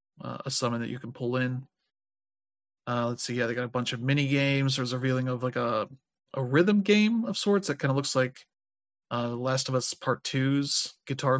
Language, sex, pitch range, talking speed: English, male, 120-135 Hz, 220 wpm